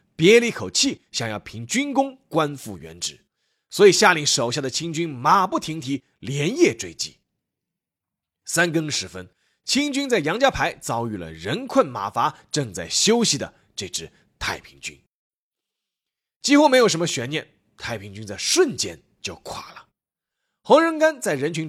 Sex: male